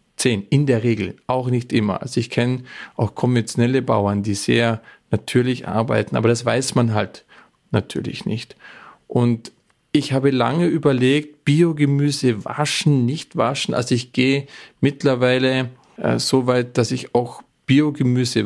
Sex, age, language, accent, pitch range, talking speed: male, 40-59, German, German, 115-135 Hz, 145 wpm